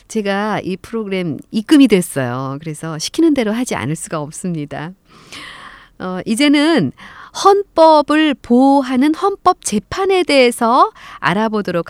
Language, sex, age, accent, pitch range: Korean, female, 40-59, native, 155-250 Hz